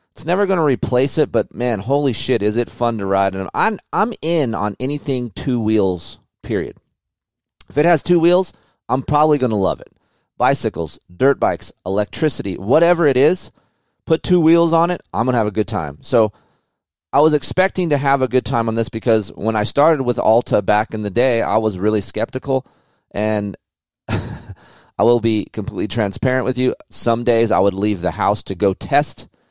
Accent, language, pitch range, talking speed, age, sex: American, English, 95-130 Hz, 195 wpm, 30-49, male